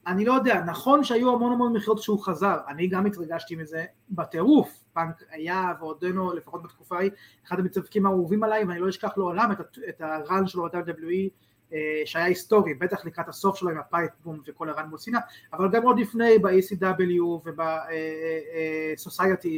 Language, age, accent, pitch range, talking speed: Hebrew, 30-49, native, 170-215 Hz, 155 wpm